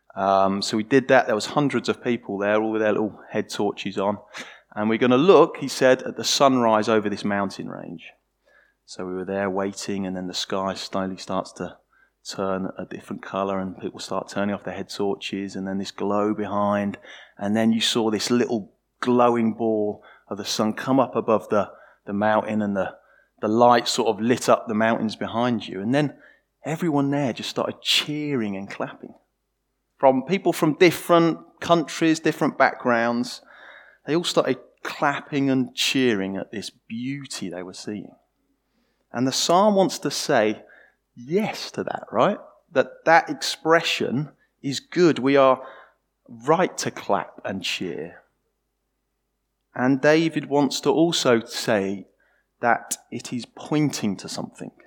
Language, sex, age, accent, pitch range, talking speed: English, male, 20-39, British, 100-135 Hz, 165 wpm